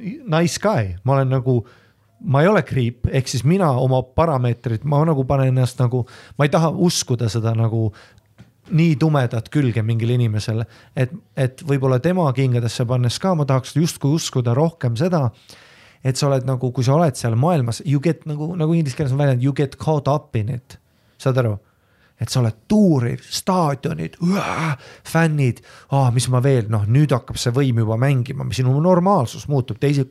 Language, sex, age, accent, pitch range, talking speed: English, male, 30-49, Finnish, 115-140 Hz, 180 wpm